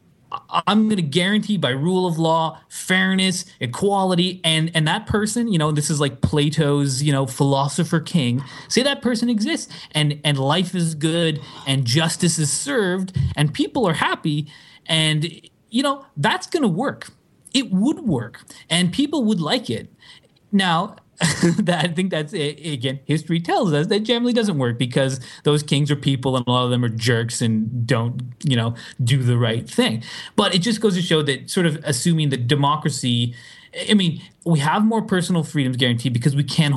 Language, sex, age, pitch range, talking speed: English, male, 20-39, 130-185 Hz, 185 wpm